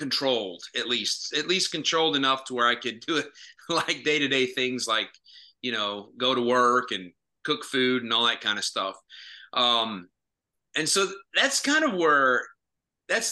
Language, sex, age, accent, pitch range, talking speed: English, male, 30-49, American, 125-180 Hz, 185 wpm